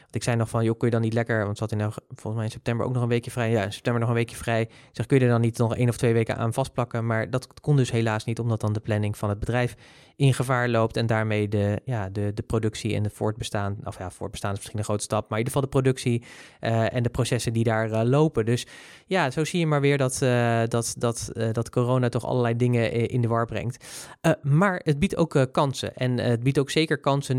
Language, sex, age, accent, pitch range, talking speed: Dutch, male, 20-39, Dutch, 115-135 Hz, 275 wpm